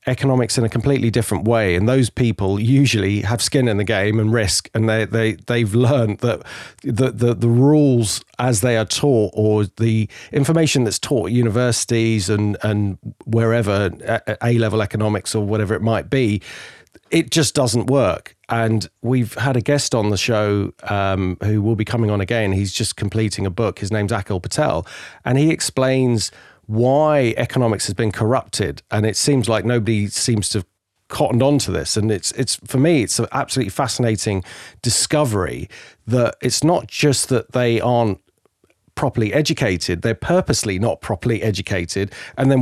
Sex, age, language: male, 40-59, English